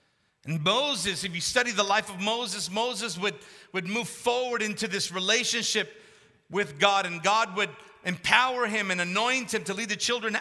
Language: English